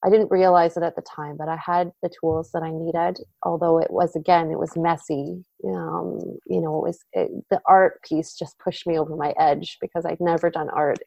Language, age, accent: English, 30-49, American